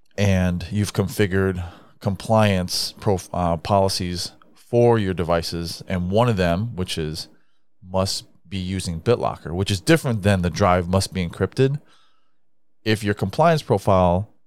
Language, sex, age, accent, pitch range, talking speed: English, male, 30-49, American, 85-110 Hz, 135 wpm